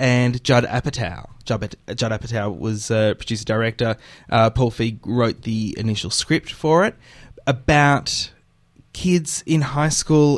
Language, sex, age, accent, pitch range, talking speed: English, male, 20-39, Australian, 110-125 Hz, 135 wpm